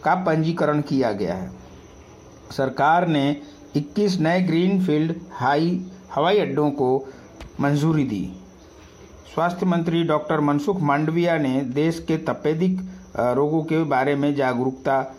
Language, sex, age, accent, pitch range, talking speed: Hindi, male, 60-79, native, 135-160 Hz, 120 wpm